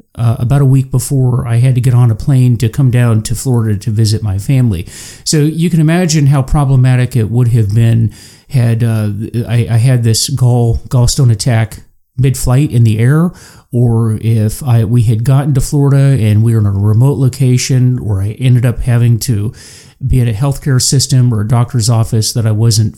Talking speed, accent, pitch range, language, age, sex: 200 wpm, American, 110-135 Hz, English, 40-59, male